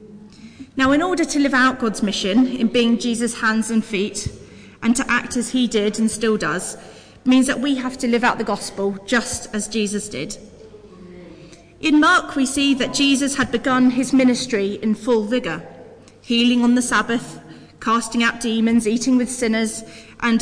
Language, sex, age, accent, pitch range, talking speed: English, female, 30-49, British, 210-255 Hz, 175 wpm